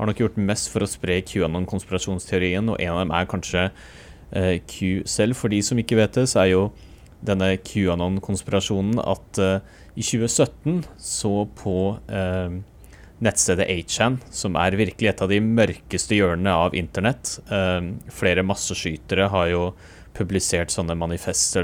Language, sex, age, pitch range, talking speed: English, male, 30-49, 90-110 Hz, 165 wpm